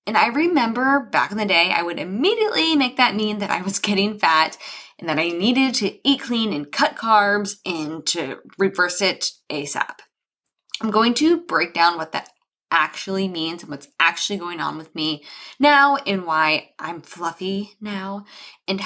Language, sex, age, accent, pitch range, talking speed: English, female, 20-39, American, 180-260 Hz, 180 wpm